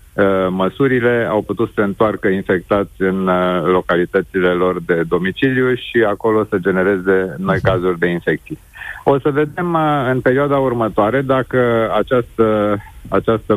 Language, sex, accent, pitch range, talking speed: Romanian, male, native, 100-125 Hz, 130 wpm